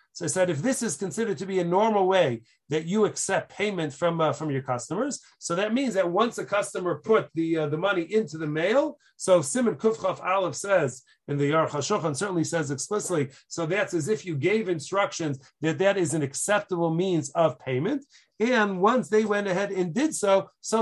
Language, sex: English, male